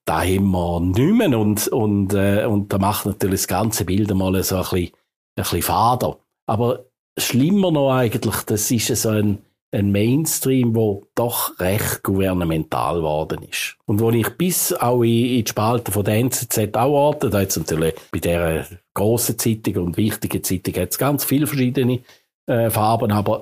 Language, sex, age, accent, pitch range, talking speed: German, male, 50-69, Austrian, 100-120 Hz, 170 wpm